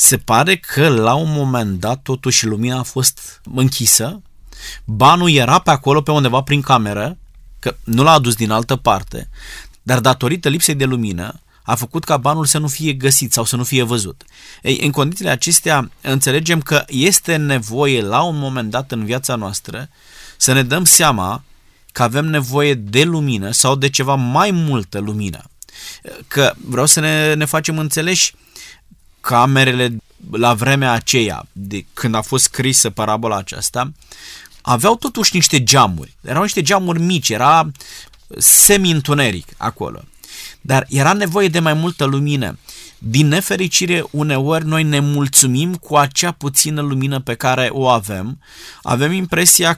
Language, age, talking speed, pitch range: Romanian, 20-39, 155 wpm, 125-155 Hz